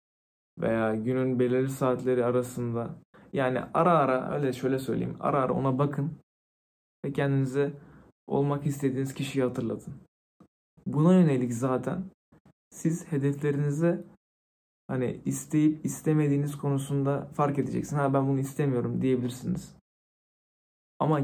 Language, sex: Turkish, male